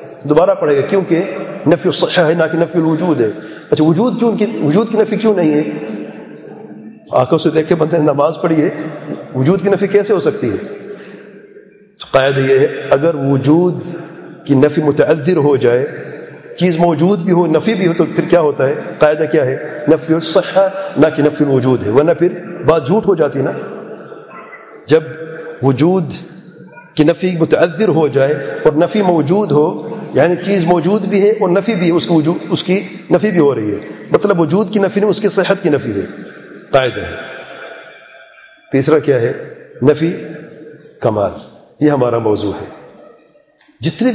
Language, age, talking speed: English, 40-59, 120 wpm